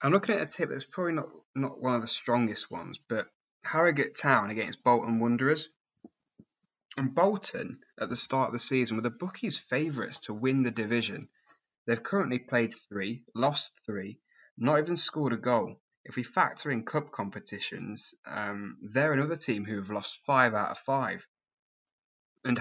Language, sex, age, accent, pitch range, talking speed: English, male, 20-39, British, 110-140 Hz, 175 wpm